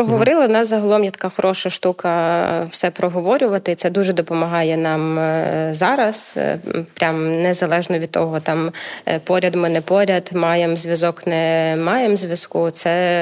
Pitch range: 170-195 Hz